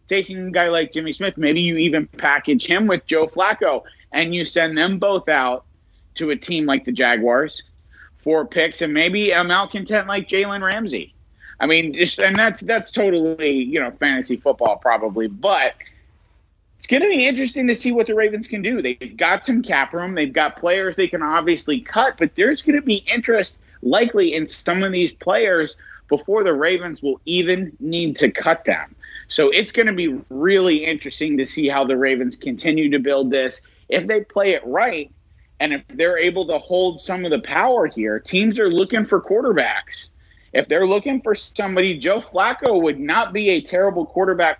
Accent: American